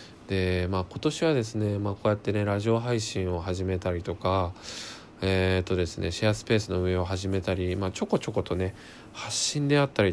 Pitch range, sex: 90-110 Hz, male